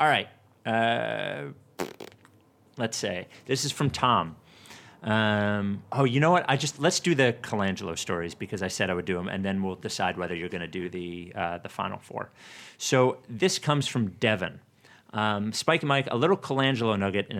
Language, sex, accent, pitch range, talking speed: English, male, American, 95-125 Hz, 190 wpm